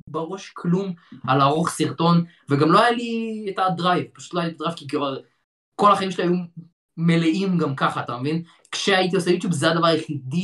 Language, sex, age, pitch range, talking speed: Hebrew, male, 20-39, 135-175 Hz, 185 wpm